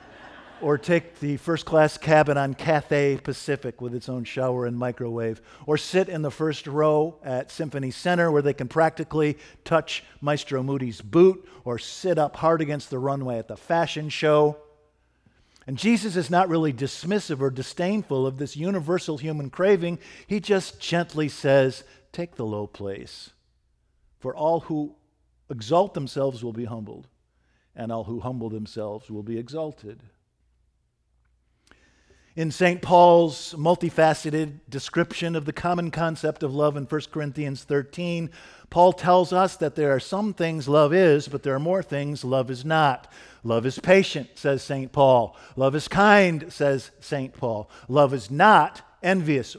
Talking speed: 155 wpm